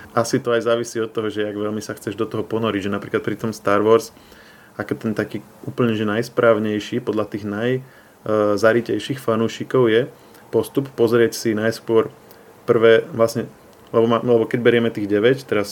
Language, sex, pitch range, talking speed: Slovak, male, 105-115 Hz, 175 wpm